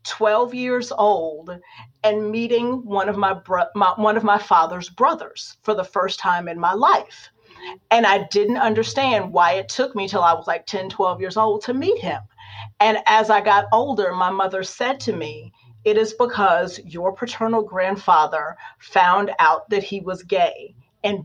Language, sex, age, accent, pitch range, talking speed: English, female, 40-59, American, 180-225 Hz, 180 wpm